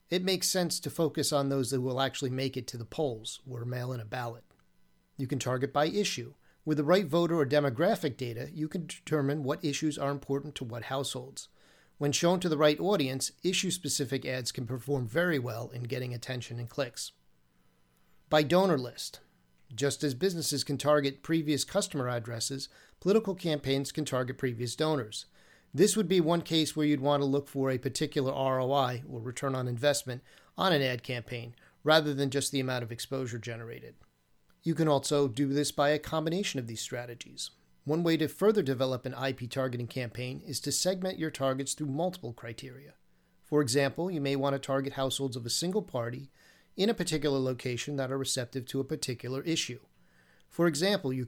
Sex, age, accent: male, 40-59, American